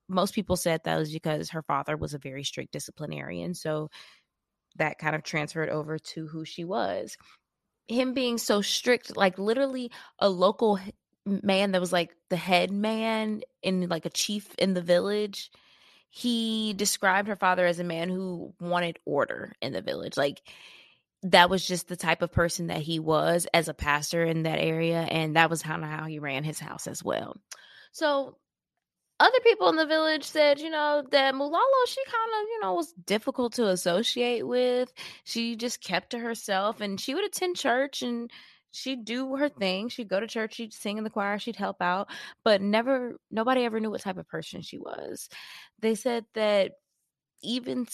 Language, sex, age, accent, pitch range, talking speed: English, female, 20-39, American, 175-260 Hz, 185 wpm